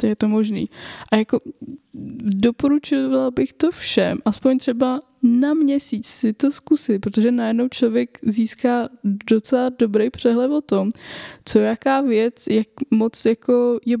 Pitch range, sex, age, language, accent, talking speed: 205-240 Hz, female, 10-29, Czech, native, 135 wpm